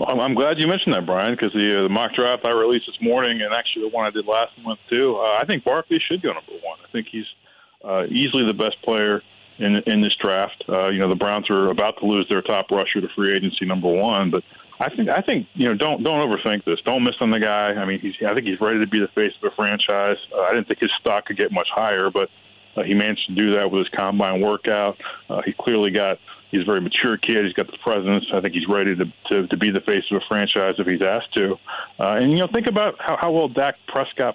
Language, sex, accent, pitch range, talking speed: English, male, American, 100-125 Hz, 270 wpm